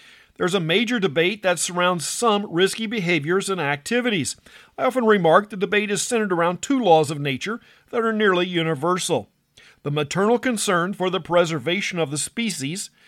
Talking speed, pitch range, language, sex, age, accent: 165 wpm, 160-205 Hz, English, male, 50-69, American